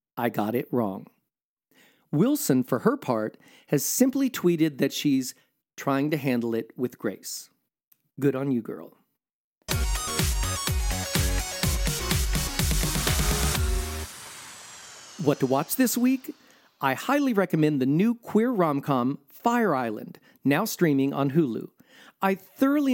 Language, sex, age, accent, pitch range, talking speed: English, male, 40-59, American, 135-215 Hz, 110 wpm